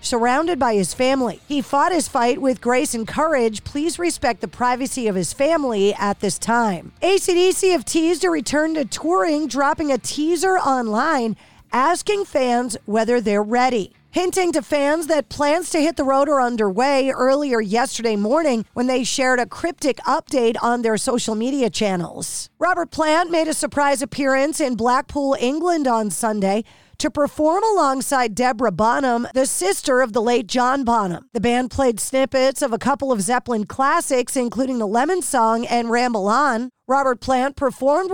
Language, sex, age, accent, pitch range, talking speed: English, female, 40-59, American, 230-285 Hz, 165 wpm